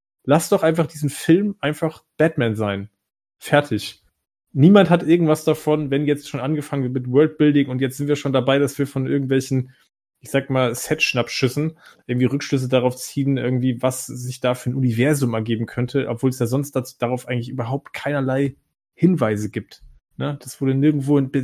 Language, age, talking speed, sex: German, 30-49, 170 wpm, male